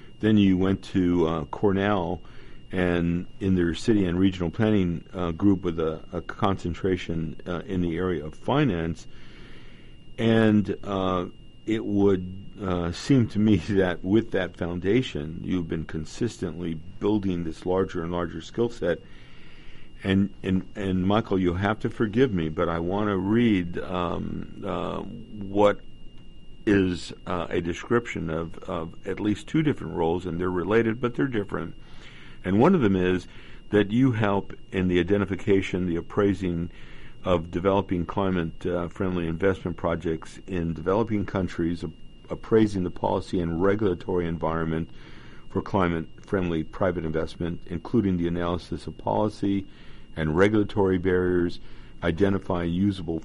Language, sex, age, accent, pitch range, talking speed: English, male, 50-69, American, 85-100 Hz, 140 wpm